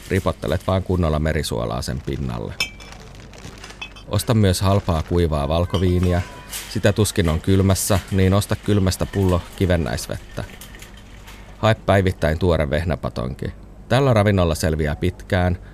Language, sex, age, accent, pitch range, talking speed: Finnish, male, 30-49, native, 80-100 Hz, 105 wpm